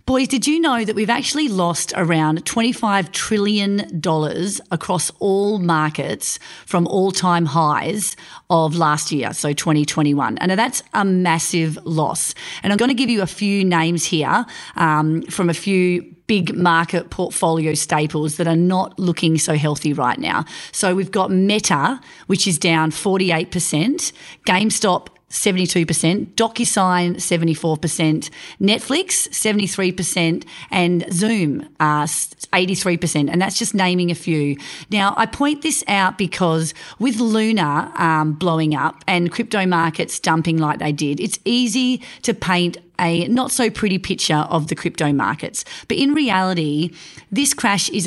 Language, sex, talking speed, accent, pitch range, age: English, female, 145 wpm, Australian, 160-210 Hz, 30-49